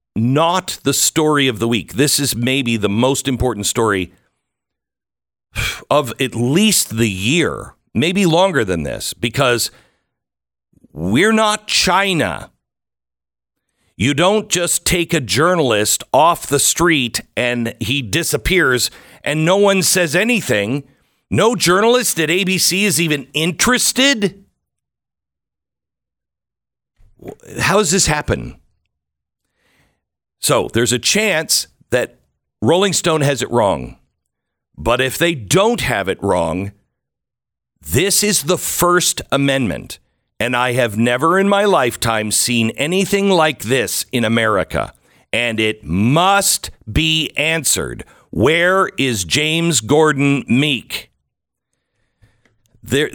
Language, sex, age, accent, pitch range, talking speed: English, male, 50-69, American, 115-170 Hz, 115 wpm